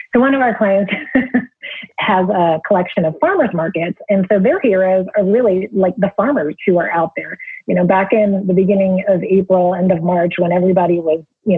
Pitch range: 175-200 Hz